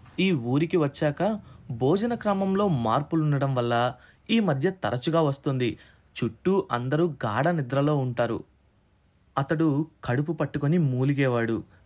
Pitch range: 120-160 Hz